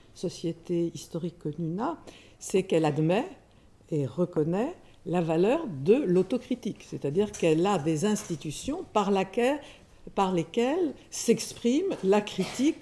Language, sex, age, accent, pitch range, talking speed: French, female, 60-79, French, 160-240 Hz, 115 wpm